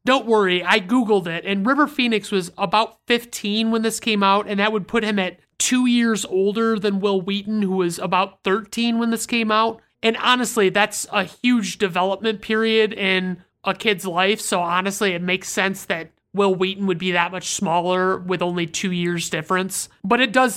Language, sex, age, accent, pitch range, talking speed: English, male, 30-49, American, 185-220 Hz, 195 wpm